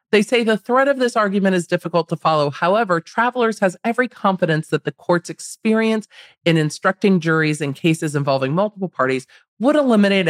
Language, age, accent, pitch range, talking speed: English, 40-59, American, 150-215 Hz, 175 wpm